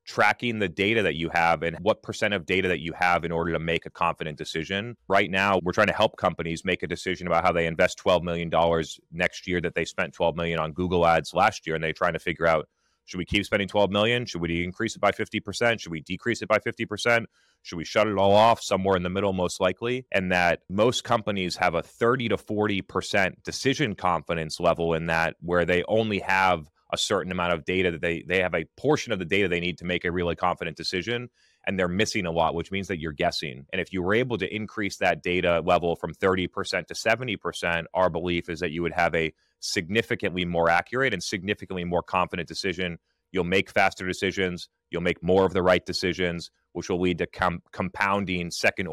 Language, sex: English, male